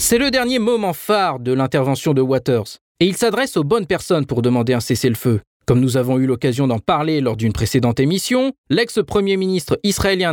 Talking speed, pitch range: 190 wpm, 130-185 Hz